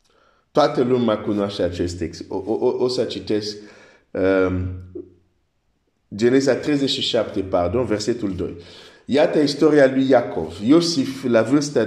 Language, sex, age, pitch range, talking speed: Romanian, male, 50-69, 110-135 Hz, 105 wpm